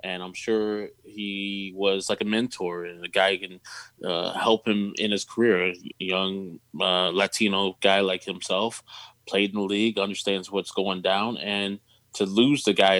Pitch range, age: 95-115 Hz, 20-39